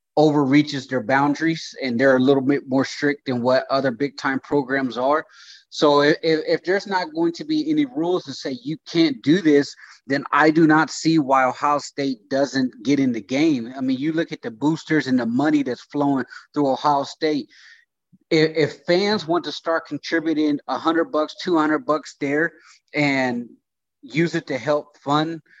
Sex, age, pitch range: male, 30-49, 140-165 Hz